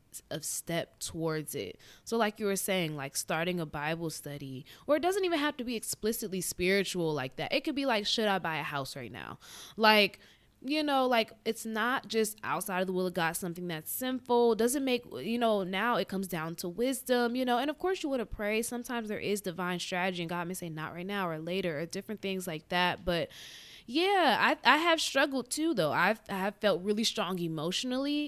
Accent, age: American, 20-39